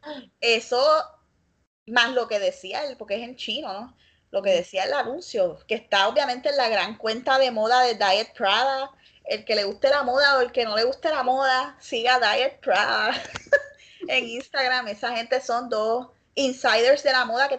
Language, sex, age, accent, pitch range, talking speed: Spanish, female, 10-29, American, 210-270 Hz, 190 wpm